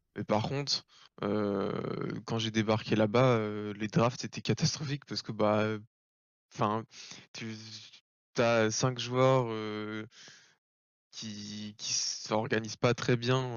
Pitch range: 110-120 Hz